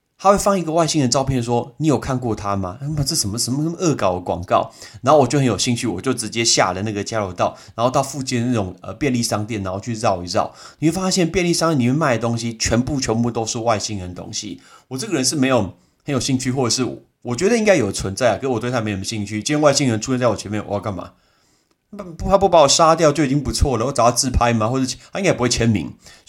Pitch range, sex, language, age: 105-140 Hz, male, Chinese, 30-49